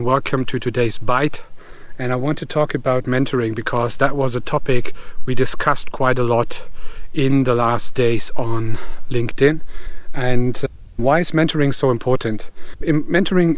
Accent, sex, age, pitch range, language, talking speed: German, male, 40-59, 120-155 Hz, English, 150 wpm